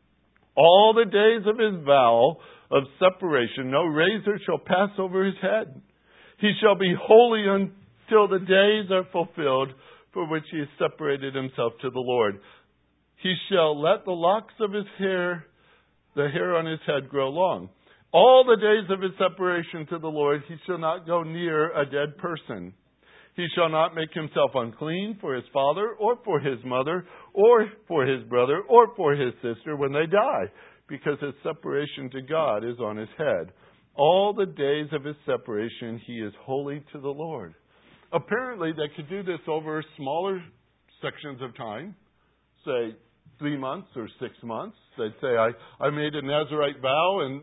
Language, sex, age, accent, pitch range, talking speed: English, male, 60-79, American, 140-190 Hz, 170 wpm